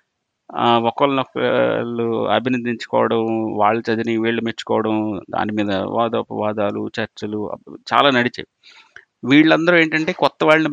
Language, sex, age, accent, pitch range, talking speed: Telugu, male, 30-49, native, 110-140 Hz, 90 wpm